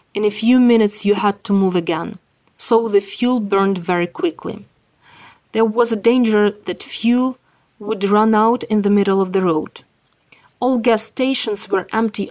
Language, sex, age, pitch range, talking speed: Ukrainian, female, 30-49, 190-225 Hz, 170 wpm